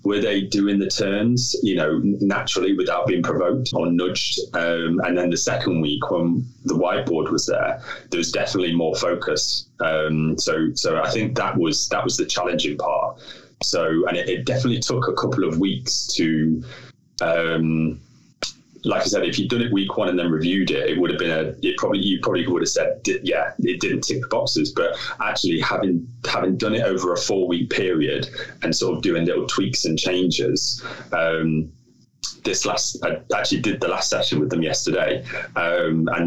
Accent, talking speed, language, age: British, 190 wpm, English, 20-39